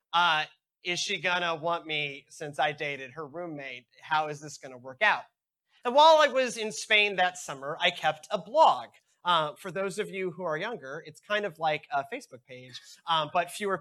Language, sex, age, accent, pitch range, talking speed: English, male, 30-49, American, 165-245 Hz, 215 wpm